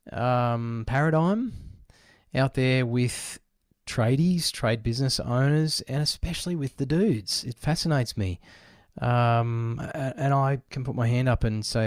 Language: English